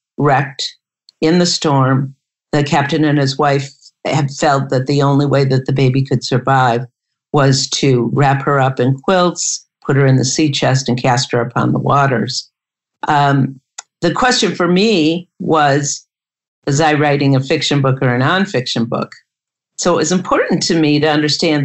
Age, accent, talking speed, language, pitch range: 50-69, American, 175 wpm, English, 135-160 Hz